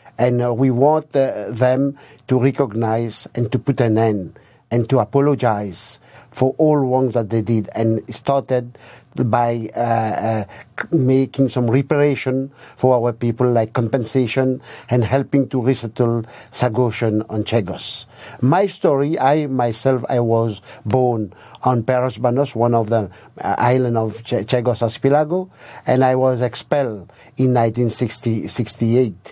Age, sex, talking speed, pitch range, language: 50-69, male, 135 wpm, 115-130 Hz, English